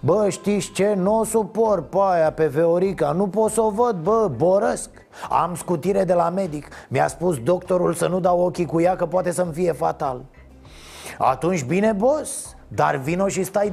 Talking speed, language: 190 wpm, Romanian